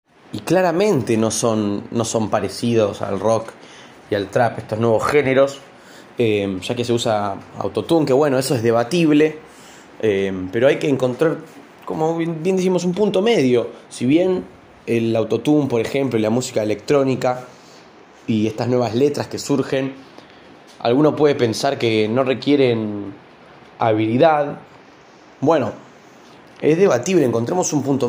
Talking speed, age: 145 wpm, 20-39